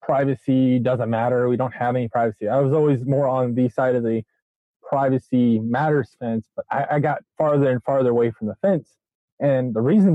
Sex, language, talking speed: male, English, 200 wpm